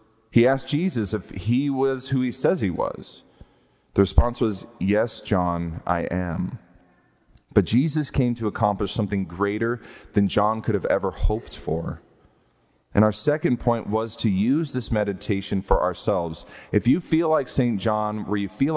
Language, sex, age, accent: English, male, 30-49, American